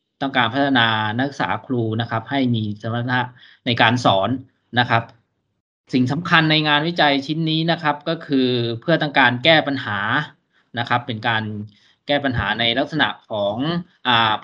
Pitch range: 115-140 Hz